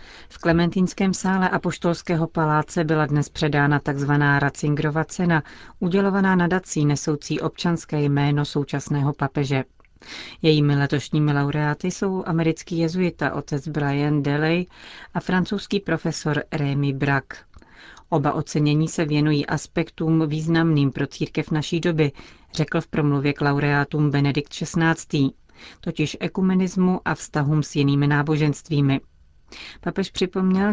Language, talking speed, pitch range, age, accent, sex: Czech, 115 wpm, 145-165 Hz, 40-59, native, female